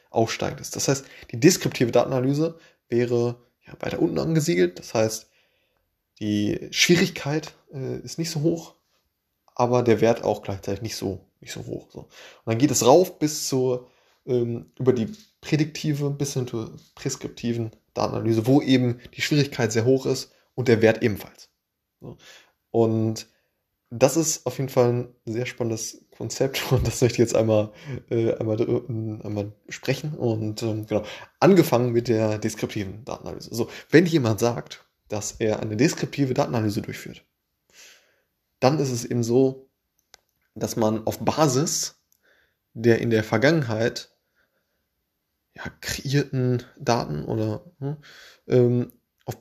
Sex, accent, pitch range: male, German, 110-140 Hz